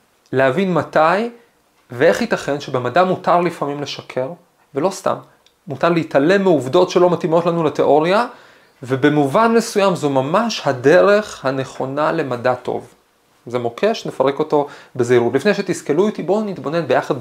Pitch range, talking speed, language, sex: 130-185 Hz, 125 wpm, Hebrew, male